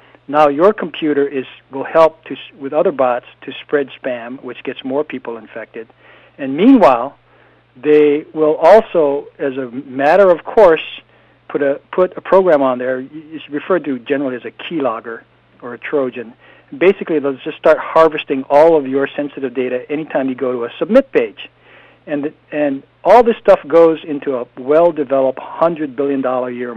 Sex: male